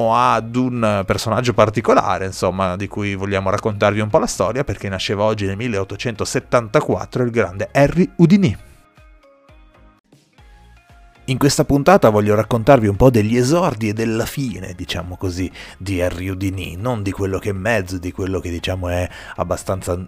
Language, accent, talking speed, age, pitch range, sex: Italian, native, 150 wpm, 30-49, 95-115 Hz, male